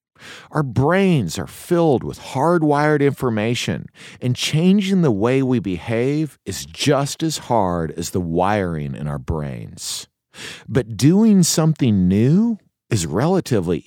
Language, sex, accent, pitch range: English, male, American, 105-165 Hz